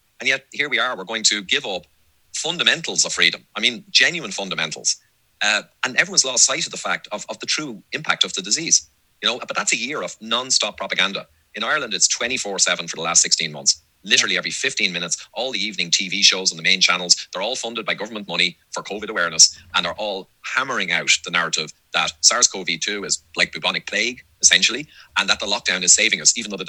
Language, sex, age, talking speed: English, male, 30-49, 220 wpm